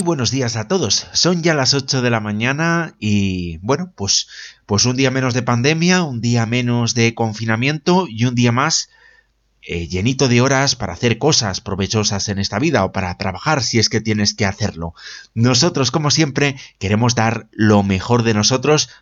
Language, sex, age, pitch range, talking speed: Spanish, male, 30-49, 105-145 Hz, 185 wpm